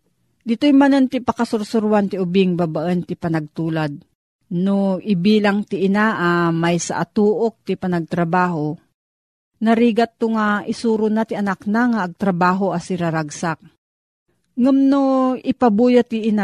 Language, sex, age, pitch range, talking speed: Filipino, female, 40-59, 175-210 Hz, 130 wpm